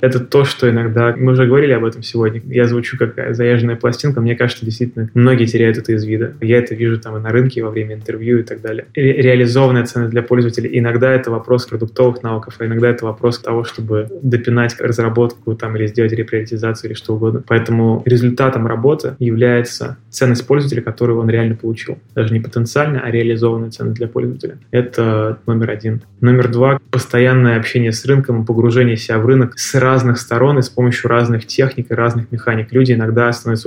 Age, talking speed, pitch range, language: 20-39, 185 wpm, 115-125 Hz, Russian